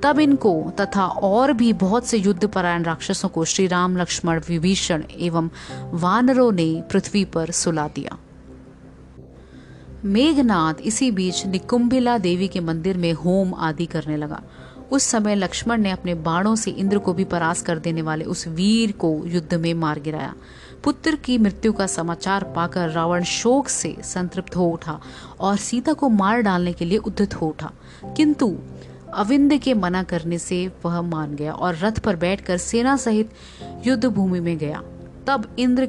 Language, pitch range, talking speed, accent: Hindi, 170-220 Hz, 160 wpm, native